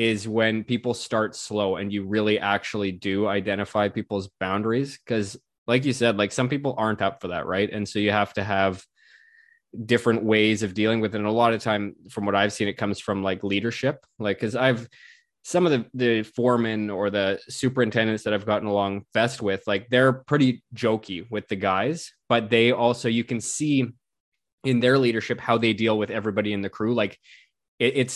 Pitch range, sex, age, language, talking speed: 100-120 Hz, male, 20-39, English, 200 wpm